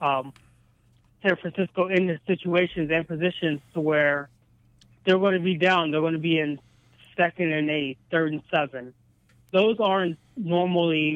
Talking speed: 155 wpm